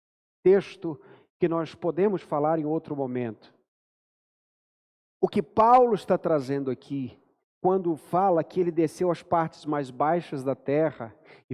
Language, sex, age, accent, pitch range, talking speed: Portuguese, male, 50-69, Brazilian, 150-195 Hz, 135 wpm